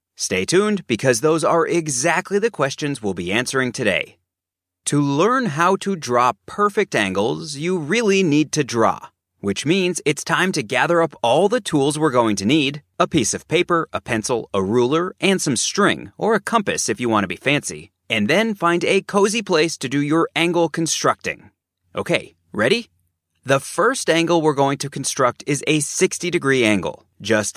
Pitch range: 120-175 Hz